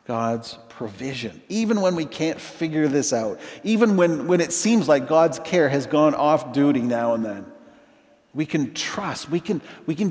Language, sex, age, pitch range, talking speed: English, male, 50-69, 125-165 Hz, 185 wpm